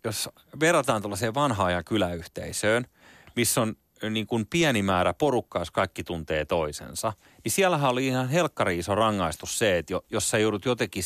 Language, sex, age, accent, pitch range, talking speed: Finnish, male, 30-49, native, 95-150 Hz, 165 wpm